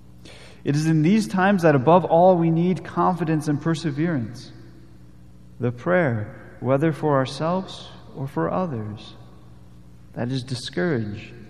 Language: English